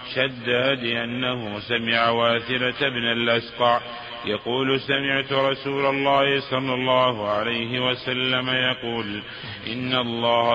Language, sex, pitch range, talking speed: Arabic, male, 115-130 Hz, 90 wpm